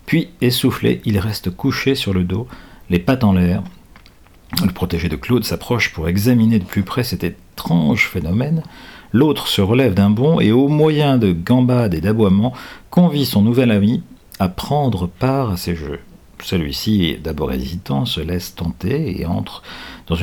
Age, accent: 50-69, French